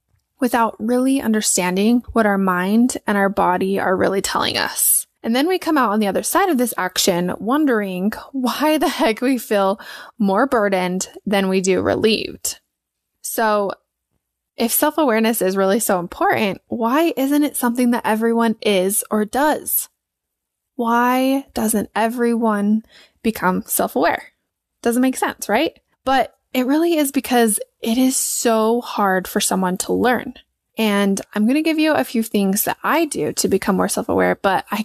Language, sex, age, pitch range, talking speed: English, female, 20-39, 205-260 Hz, 160 wpm